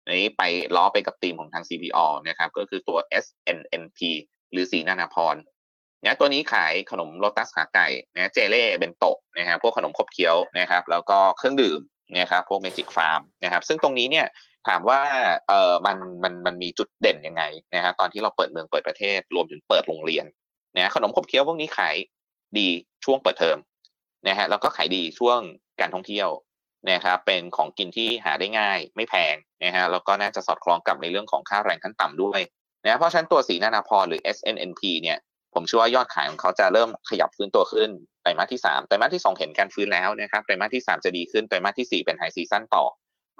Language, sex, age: Thai, male, 20-39